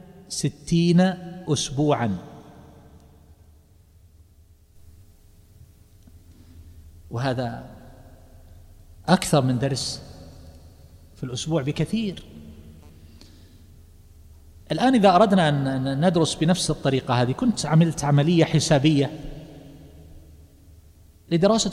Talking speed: 60 wpm